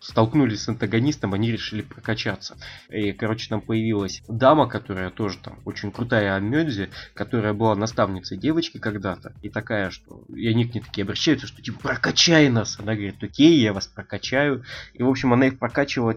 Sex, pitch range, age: male, 105-130 Hz, 20-39